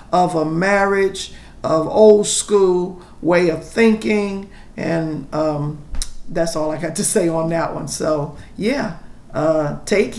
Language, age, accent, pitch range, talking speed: English, 50-69, American, 170-235 Hz, 140 wpm